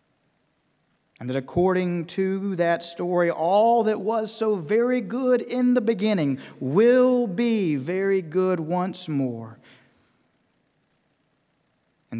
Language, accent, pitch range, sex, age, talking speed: English, American, 140-195 Hz, male, 50-69, 110 wpm